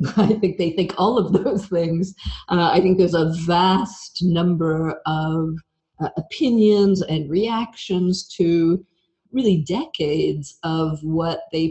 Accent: American